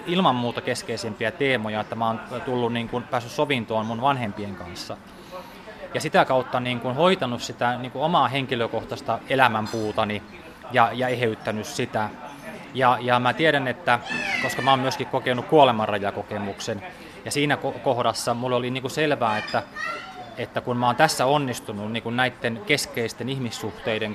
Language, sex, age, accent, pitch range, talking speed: Finnish, male, 20-39, native, 115-135 Hz, 145 wpm